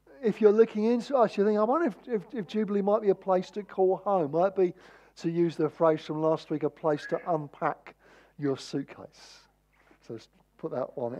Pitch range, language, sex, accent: 135-200 Hz, English, male, British